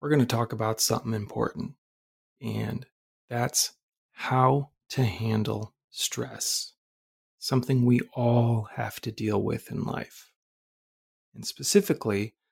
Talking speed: 115 wpm